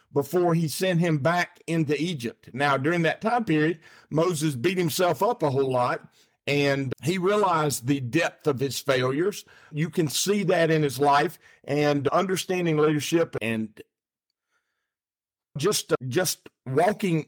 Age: 50-69